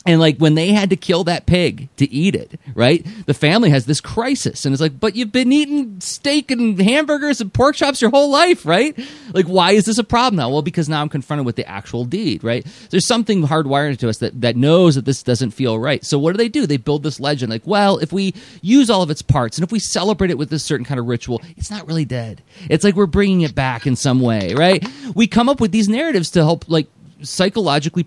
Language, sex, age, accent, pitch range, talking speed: English, male, 30-49, American, 135-200 Hz, 250 wpm